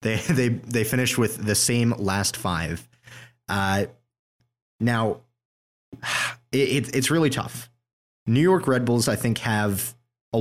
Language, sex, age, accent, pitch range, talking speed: English, male, 20-39, American, 100-125 Hz, 140 wpm